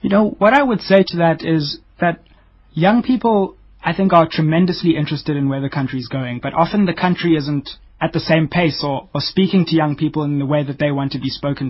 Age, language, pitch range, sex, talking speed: 20-39, English, 145-185 Hz, male, 240 wpm